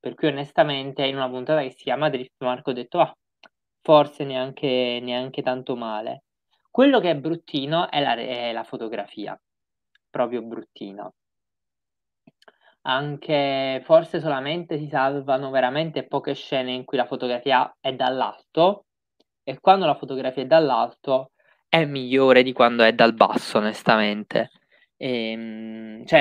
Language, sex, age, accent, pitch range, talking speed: Italian, male, 20-39, native, 125-145 Hz, 135 wpm